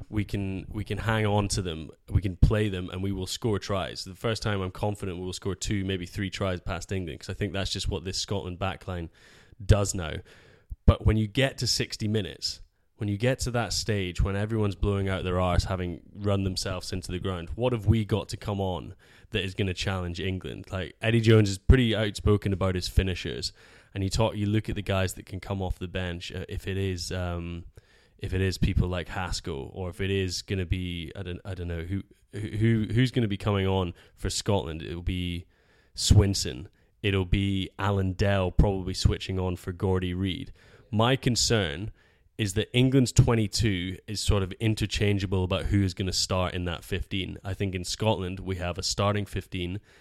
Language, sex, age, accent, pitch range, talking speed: English, male, 10-29, British, 90-105 Hz, 210 wpm